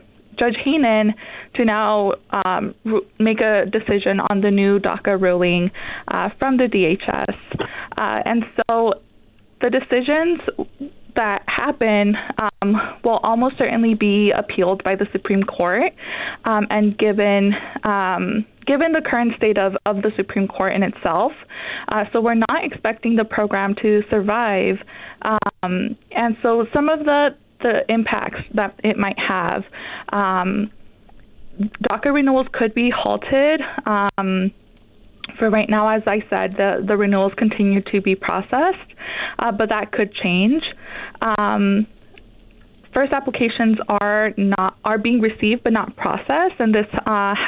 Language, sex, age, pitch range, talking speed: English, female, 20-39, 200-235 Hz, 140 wpm